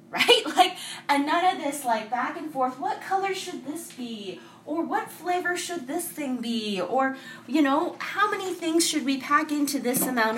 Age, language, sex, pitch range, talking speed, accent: 20-39, English, female, 235-315 Hz, 195 wpm, American